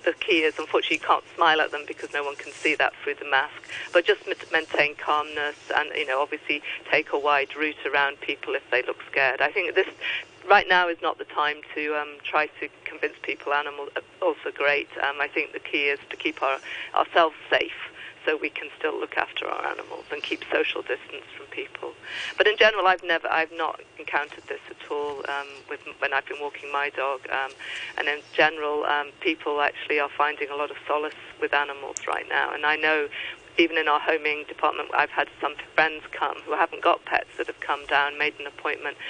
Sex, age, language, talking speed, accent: female, 50-69, English, 215 wpm, British